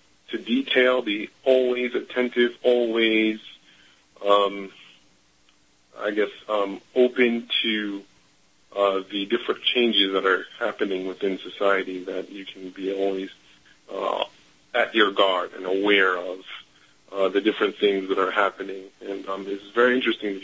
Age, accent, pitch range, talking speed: 30-49, American, 95-115 Hz, 135 wpm